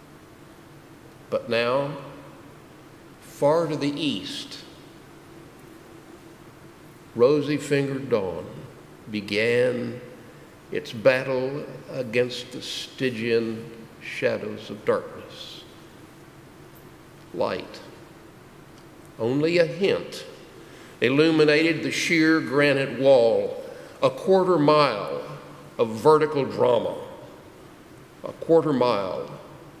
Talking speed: 70 wpm